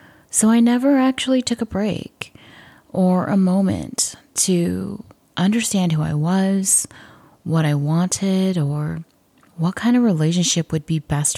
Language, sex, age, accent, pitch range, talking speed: English, female, 30-49, American, 155-200 Hz, 135 wpm